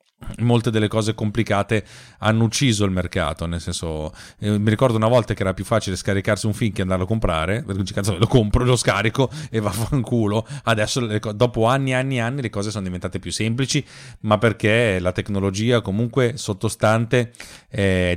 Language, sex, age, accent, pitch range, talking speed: Italian, male, 30-49, native, 100-115 Hz, 175 wpm